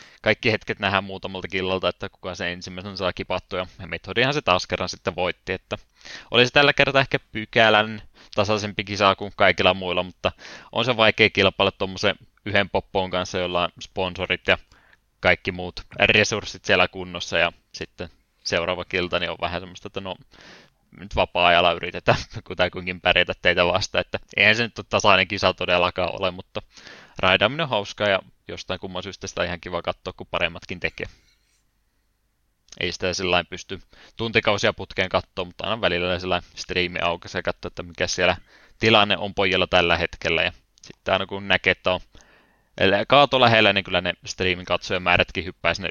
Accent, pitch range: native, 90-100 Hz